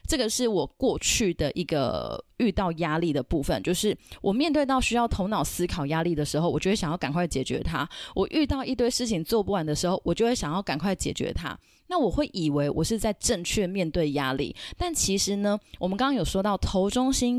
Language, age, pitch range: Chinese, 20-39, 165-225 Hz